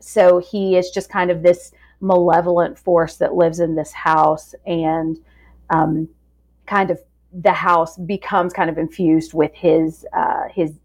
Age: 30-49